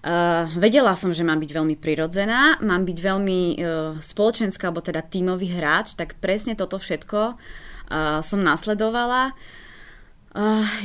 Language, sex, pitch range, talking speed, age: Slovak, female, 170-205 Hz, 140 wpm, 20-39